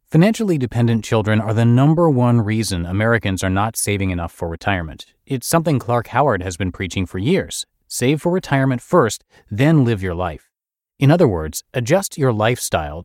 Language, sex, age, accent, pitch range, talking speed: English, male, 30-49, American, 100-140 Hz, 175 wpm